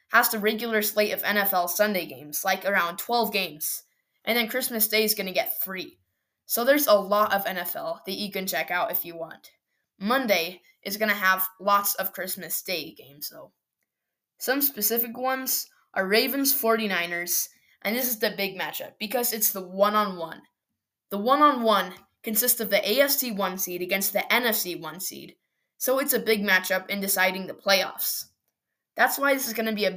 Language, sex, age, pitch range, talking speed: English, female, 10-29, 190-240 Hz, 185 wpm